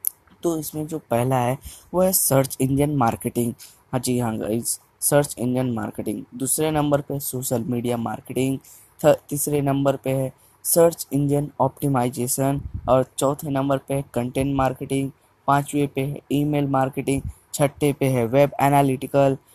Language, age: Hindi, 20-39